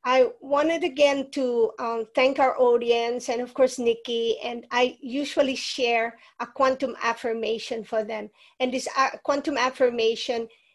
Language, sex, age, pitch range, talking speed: English, female, 50-69, 235-285 Hz, 145 wpm